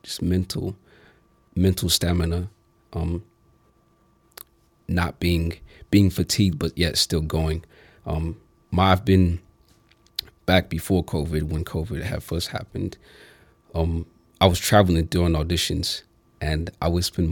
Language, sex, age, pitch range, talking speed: English, male, 30-49, 80-95 Hz, 120 wpm